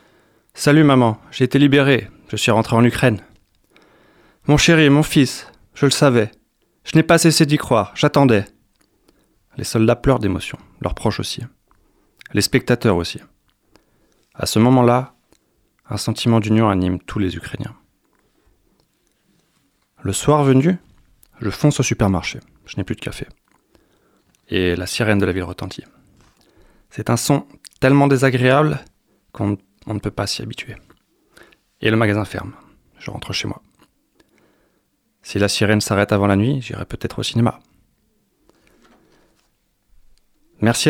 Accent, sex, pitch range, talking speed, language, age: French, male, 105-130 Hz, 145 wpm, French, 30-49